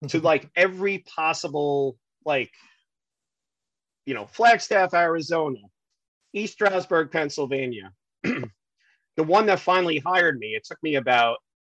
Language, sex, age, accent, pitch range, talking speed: English, male, 30-49, American, 125-155 Hz, 115 wpm